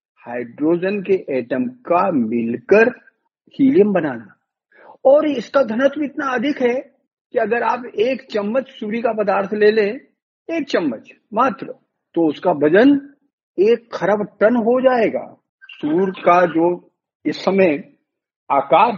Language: Hindi